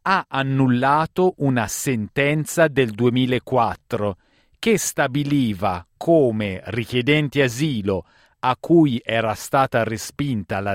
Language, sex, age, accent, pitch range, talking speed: Italian, male, 40-59, native, 110-145 Hz, 90 wpm